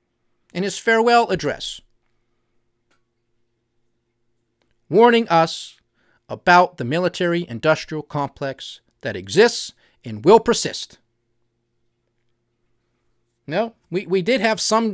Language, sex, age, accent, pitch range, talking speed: English, male, 40-59, American, 140-215 Hz, 85 wpm